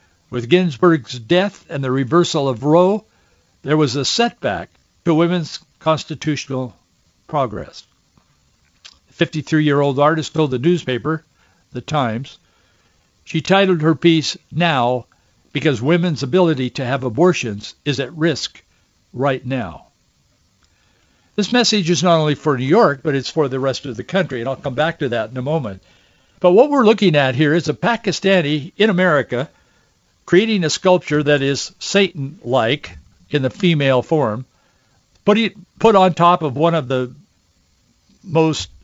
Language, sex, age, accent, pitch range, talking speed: English, male, 60-79, American, 125-175 Hz, 145 wpm